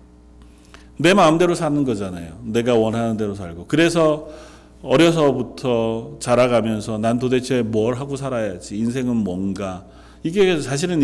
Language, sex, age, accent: Korean, male, 40-59, native